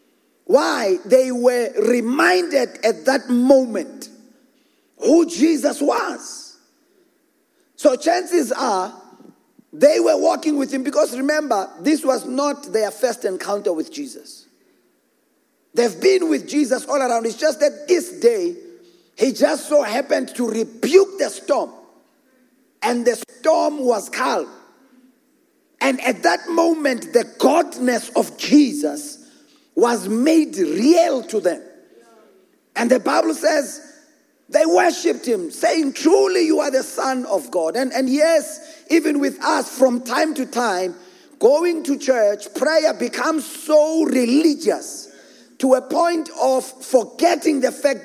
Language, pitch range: English, 255-320 Hz